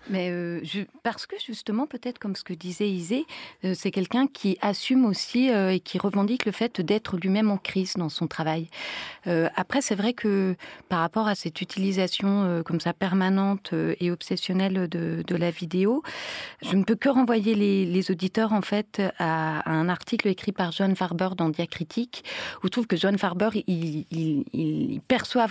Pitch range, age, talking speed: 175-215 Hz, 40-59, 195 wpm